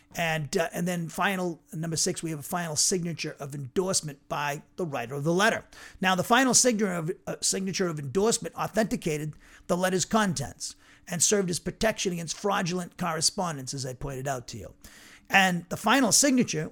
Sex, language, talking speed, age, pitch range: male, English, 180 wpm, 40-59, 150-190 Hz